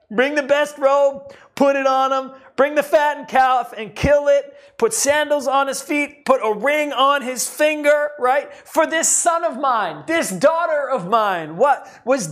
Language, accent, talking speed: English, American, 185 wpm